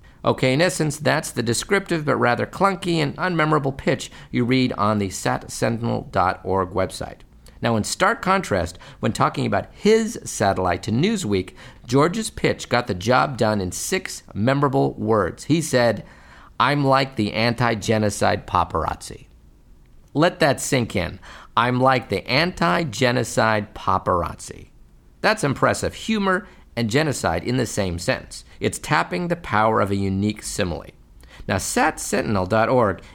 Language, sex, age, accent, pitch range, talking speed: English, male, 50-69, American, 105-150 Hz, 135 wpm